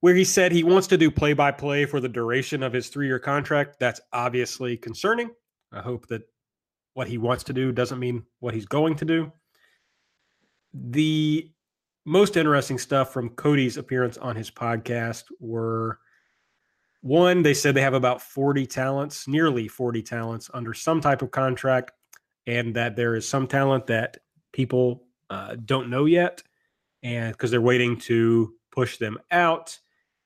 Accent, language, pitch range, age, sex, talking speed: American, English, 120-145 Hz, 30-49, male, 160 wpm